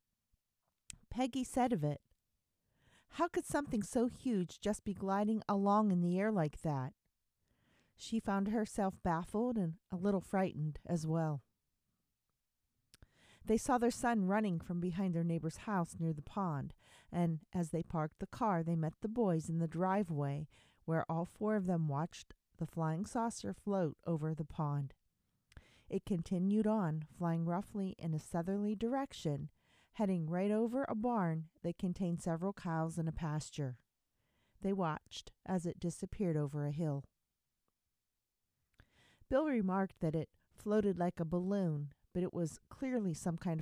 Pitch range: 160-205 Hz